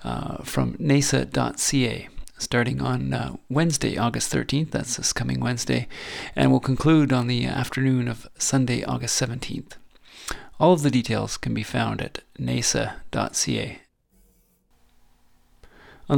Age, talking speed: 40-59, 120 wpm